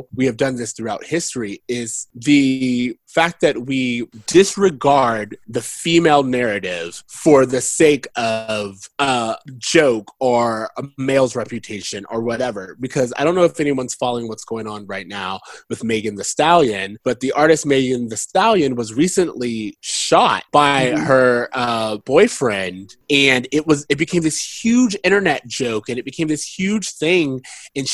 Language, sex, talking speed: English, male, 155 wpm